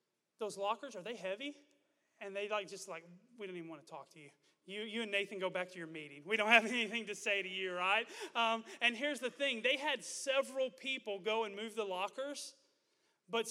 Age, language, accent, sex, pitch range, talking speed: 30-49, English, American, male, 190-230 Hz, 225 wpm